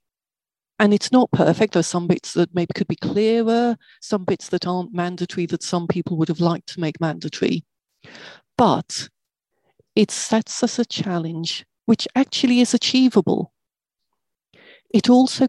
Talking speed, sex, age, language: 150 wpm, female, 40-59, English